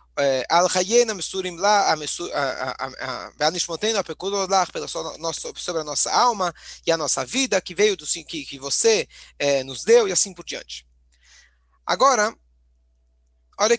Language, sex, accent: Portuguese, male, Brazilian